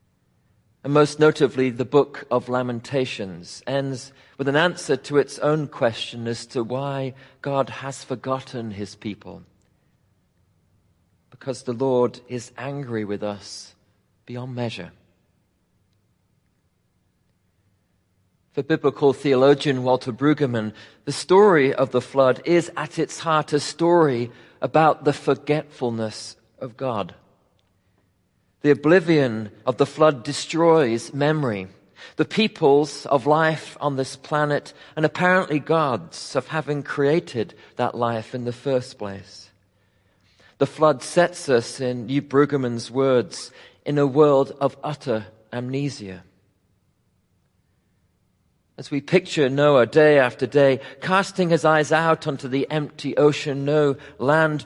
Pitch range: 110-145 Hz